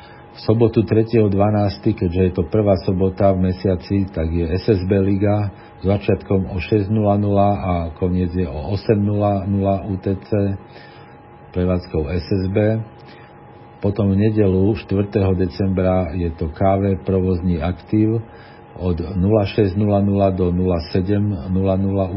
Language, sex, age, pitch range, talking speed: Slovak, male, 50-69, 90-105 Hz, 110 wpm